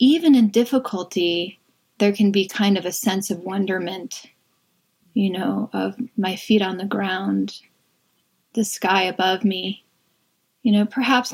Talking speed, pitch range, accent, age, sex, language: 145 wpm, 195-235 Hz, American, 30-49, female, English